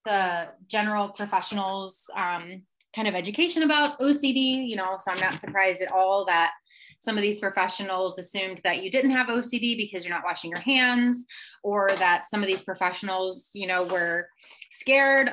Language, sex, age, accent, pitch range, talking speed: English, female, 20-39, American, 185-235 Hz, 170 wpm